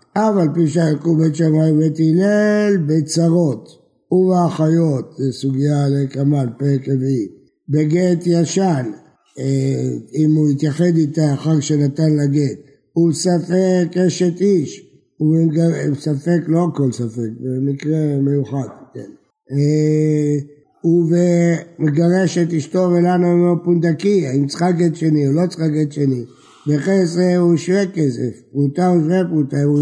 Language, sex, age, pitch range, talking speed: Hebrew, male, 60-79, 145-175 Hz, 115 wpm